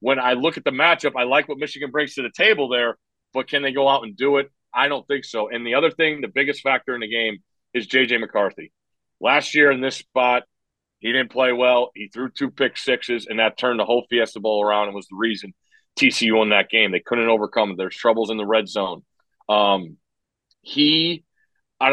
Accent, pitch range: American, 120-140 Hz